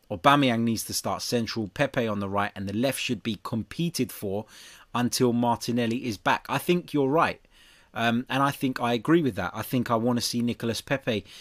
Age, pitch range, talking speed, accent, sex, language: 20-39, 110-135 Hz, 210 wpm, British, male, English